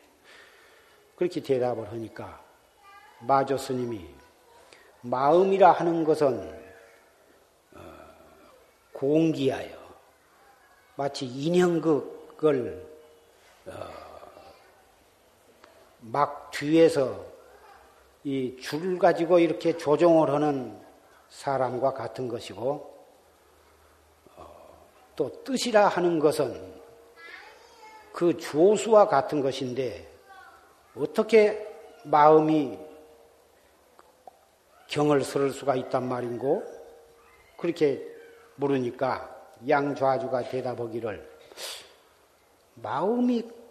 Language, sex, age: Korean, male, 40-59